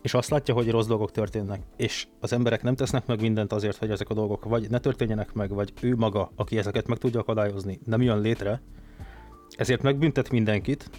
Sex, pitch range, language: male, 105-120 Hz, Hungarian